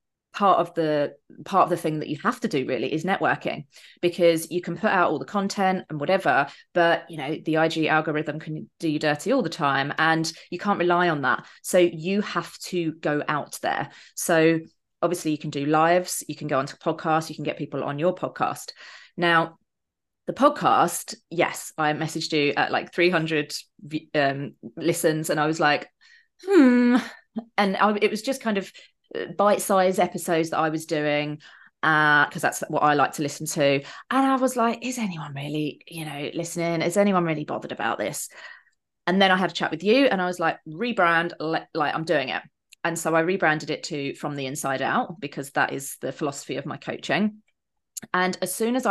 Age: 30-49